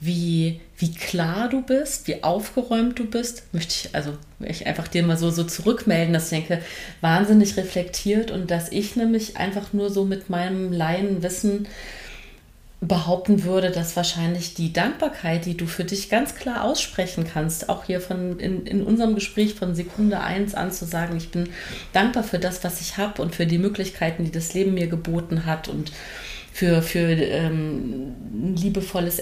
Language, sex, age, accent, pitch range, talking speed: German, female, 30-49, German, 160-195 Hz, 175 wpm